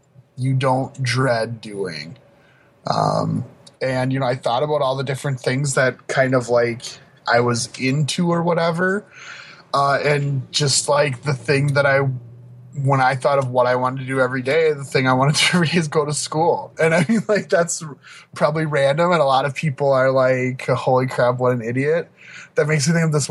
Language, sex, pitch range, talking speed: English, male, 125-160 Hz, 200 wpm